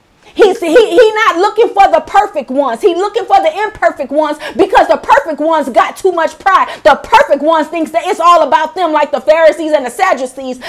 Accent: American